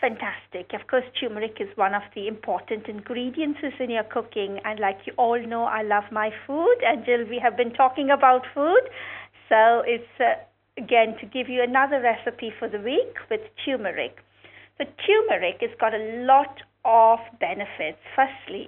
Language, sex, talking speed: English, female, 165 wpm